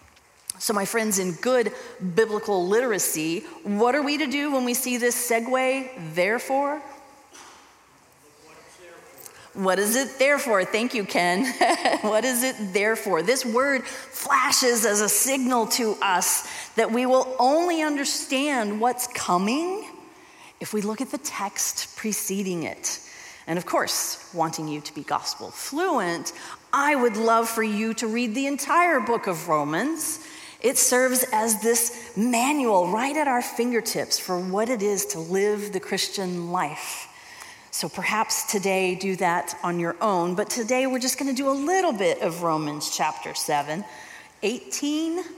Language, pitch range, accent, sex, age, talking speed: English, 190-275 Hz, American, female, 30-49, 150 wpm